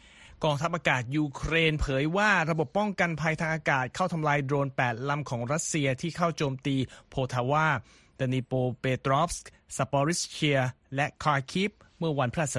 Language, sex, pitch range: Thai, male, 130-160 Hz